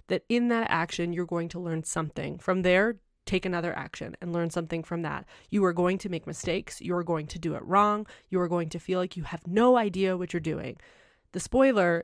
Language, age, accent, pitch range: English, 20-39, American, 170-210 Hz